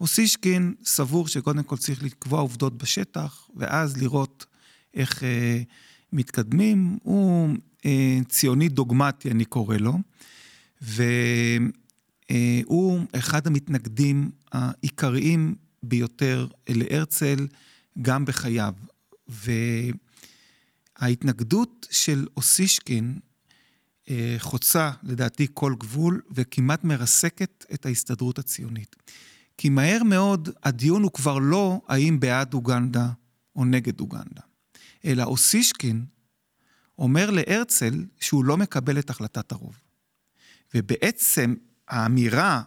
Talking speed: 95 wpm